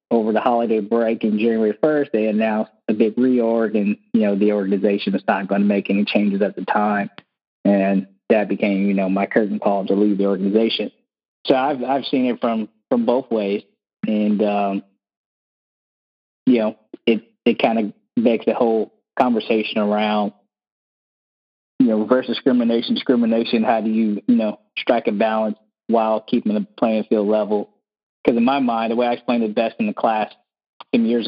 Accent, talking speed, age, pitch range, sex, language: American, 180 wpm, 20-39, 105-115 Hz, male, English